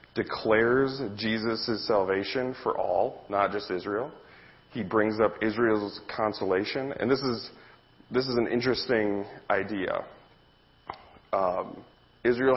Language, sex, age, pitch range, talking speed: English, male, 30-49, 95-115 Hz, 110 wpm